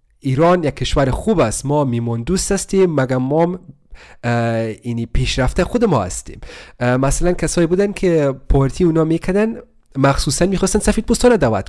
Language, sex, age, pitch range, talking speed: Persian, male, 30-49, 125-180 Hz, 145 wpm